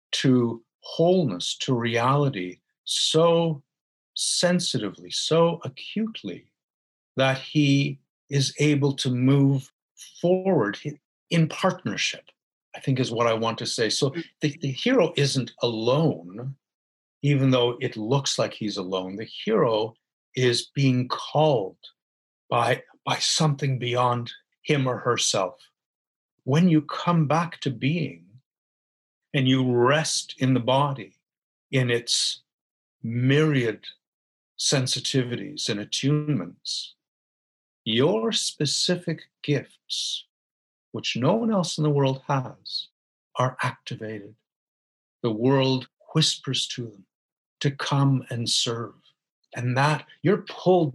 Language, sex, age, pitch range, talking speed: Arabic, male, 50-69, 120-150 Hz, 110 wpm